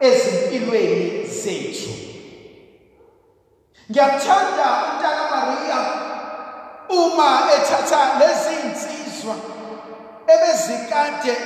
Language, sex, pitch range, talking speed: English, male, 240-335 Hz, 65 wpm